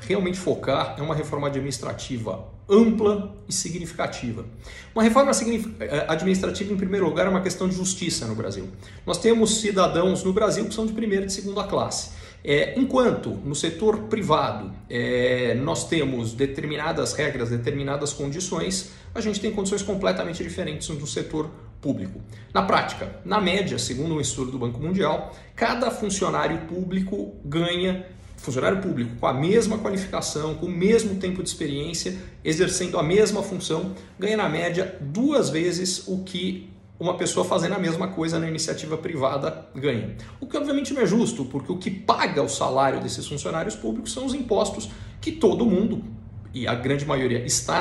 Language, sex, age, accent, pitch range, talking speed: Portuguese, male, 40-59, Brazilian, 130-200 Hz, 160 wpm